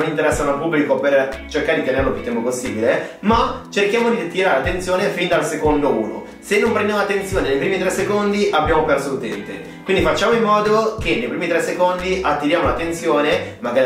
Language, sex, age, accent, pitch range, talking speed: Italian, male, 30-49, native, 135-205 Hz, 185 wpm